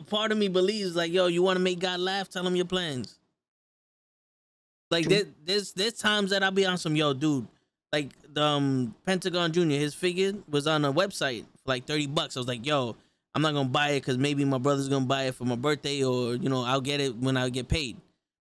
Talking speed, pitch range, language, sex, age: 235 wpm, 140-180 Hz, English, male, 20-39